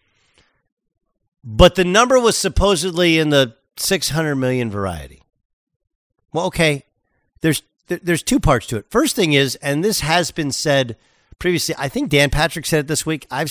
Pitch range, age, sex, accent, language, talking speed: 125-170 Hz, 50-69, male, American, English, 160 wpm